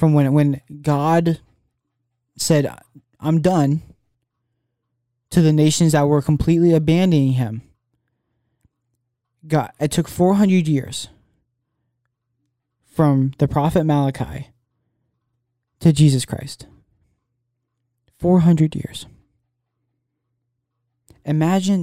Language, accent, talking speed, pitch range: English, American, 80 wpm, 120-145 Hz